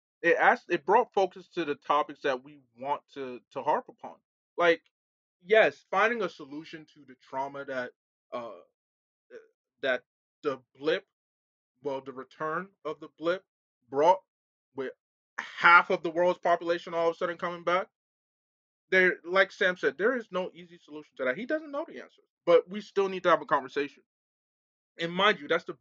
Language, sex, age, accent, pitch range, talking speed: English, male, 20-39, American, 135-190 Hz, 175 wpm